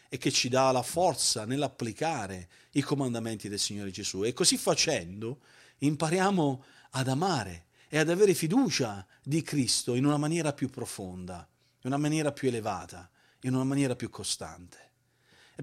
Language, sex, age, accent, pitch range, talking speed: Italian, male, 40-59, native, 115-150 Hz, 155 wpm